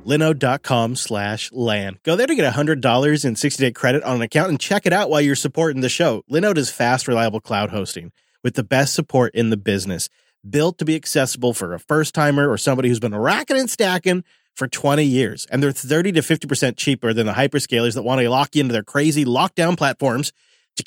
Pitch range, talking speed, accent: 120-150 Hz, 210 wpm, American